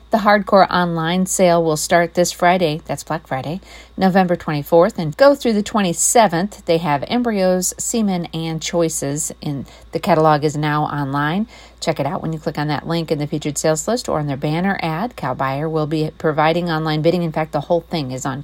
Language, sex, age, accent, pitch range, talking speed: English, female, 40-59, American, 155-205 Hz, 200 wpm